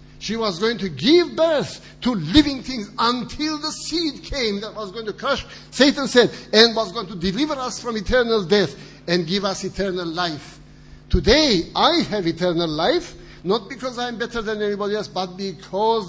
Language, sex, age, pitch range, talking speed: English, male, 60-79, 165-225 Hz, 185 wpm